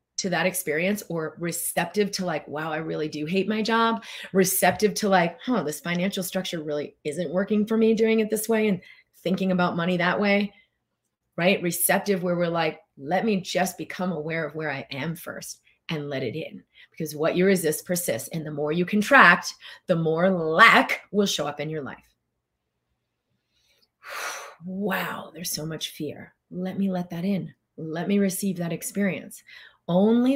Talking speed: 180 wpm